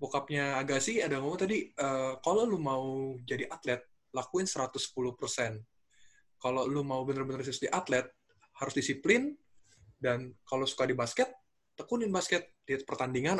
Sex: male